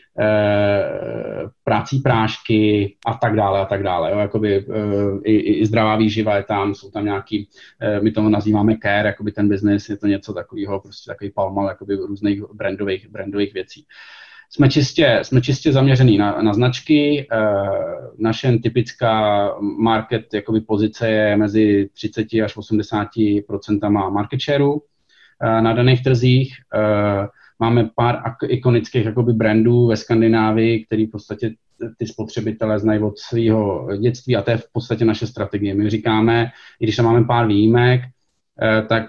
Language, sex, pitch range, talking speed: Czech, male, 105-115 Hz, 140 wpm